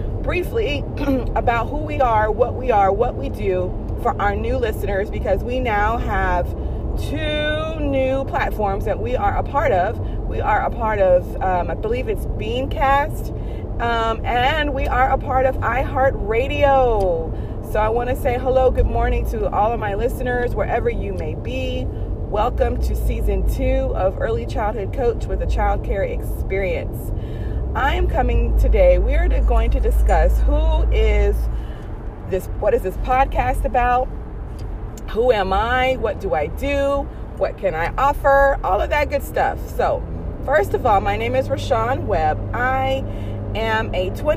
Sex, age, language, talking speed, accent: female, 30-49, English, 165 wpm, American